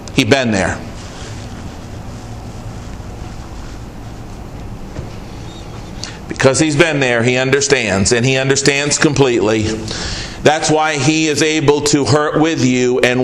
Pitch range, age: 120-160 Hz, 40-59